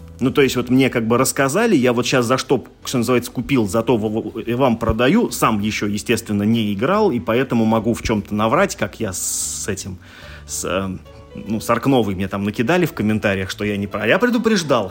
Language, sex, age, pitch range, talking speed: Russian, male, 30-49, 100-130 Hz, 190 wpm